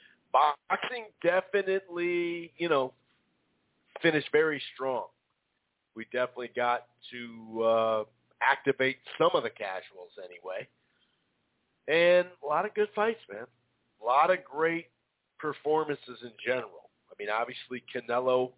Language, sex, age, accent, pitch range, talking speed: English, male, 40-59, American, 120-180 Hz, 115 wpm